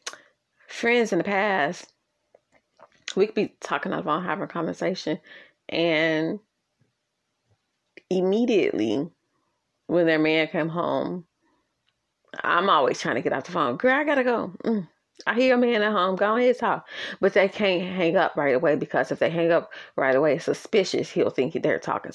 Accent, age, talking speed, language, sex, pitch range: American, 30-49, 175 wpm, English, female, 170-215 Hz